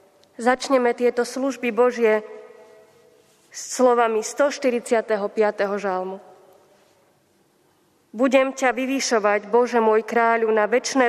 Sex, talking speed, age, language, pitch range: female, 85 wpm, 20-39, Slovak, 215-250 Hz